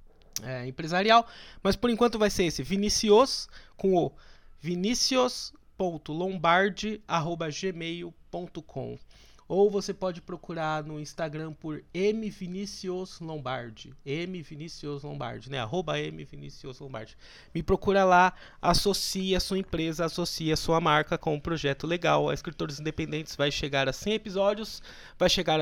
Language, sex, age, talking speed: Portuguese, male, 20-39, 120 wpm